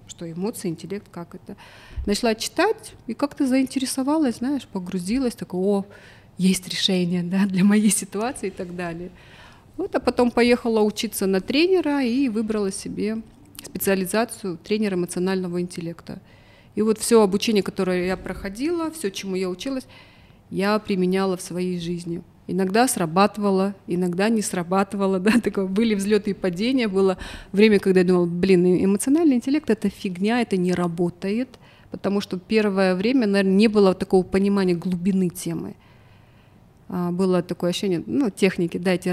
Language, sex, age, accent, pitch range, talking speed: Russian, female, 30-49, native, 180-215 Hz, 145 wpm